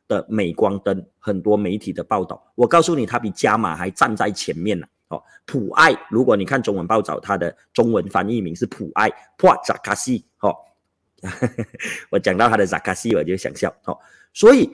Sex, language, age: male, Chinese, 30-49